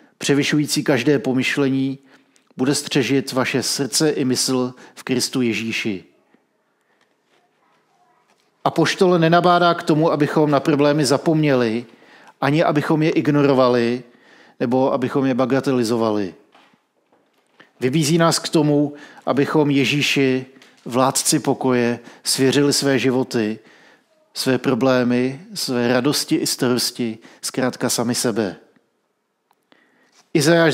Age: 50-69